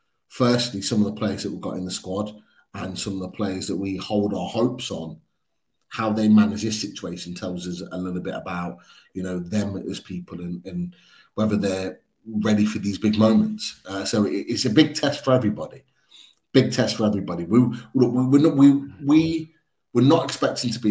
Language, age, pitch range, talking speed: English, 30-49, 100-140 Hz, 200 wpm